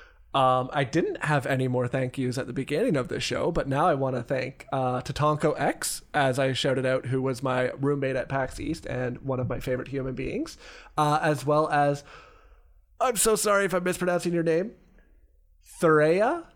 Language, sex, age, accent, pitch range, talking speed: English, male, 20-39, American, 130-150 Hz, 190 wpm